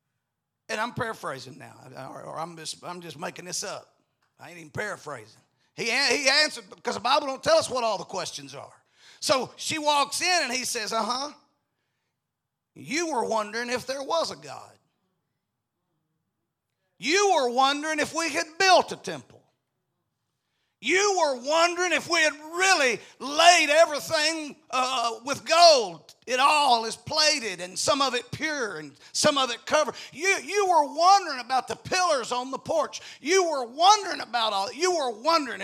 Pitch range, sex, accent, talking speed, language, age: 225-320 Hz, male, American, 165 wpm, English, 40-59